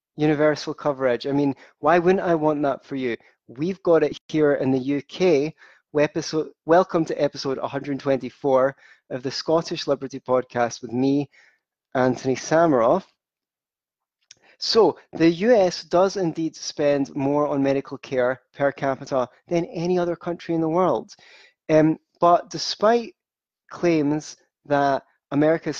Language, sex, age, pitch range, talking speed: English, male, 30-49, 130-160 Hz, 135 wpm